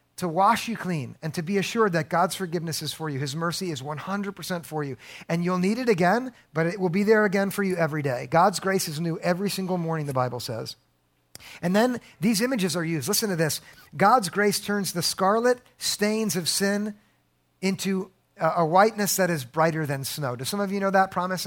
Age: 50-69